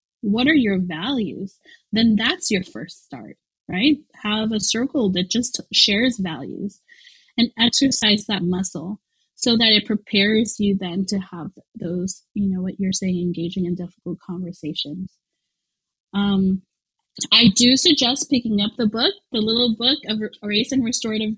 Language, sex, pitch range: English, female, 190-245 Hz